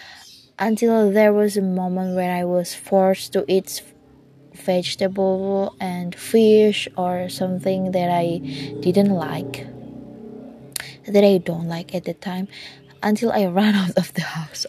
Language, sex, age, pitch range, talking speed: Indonesian, female, 20-39, 175-210 Hz, 140 wpm